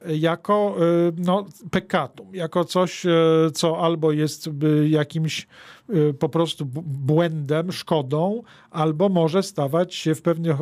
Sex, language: male, Polish